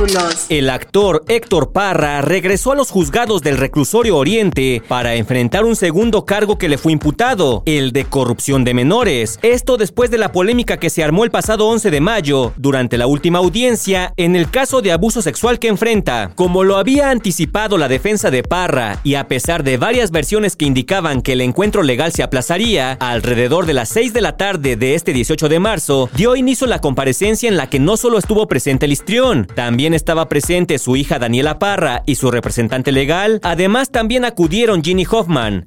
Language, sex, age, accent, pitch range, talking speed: Spanish, male, 40-59, Mexican, 135-205 Hz, 190 wpm